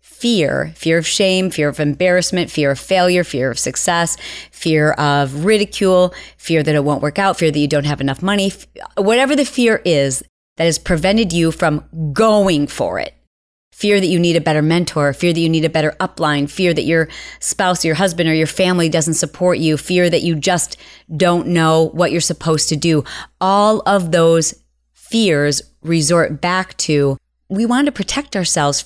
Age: 30-49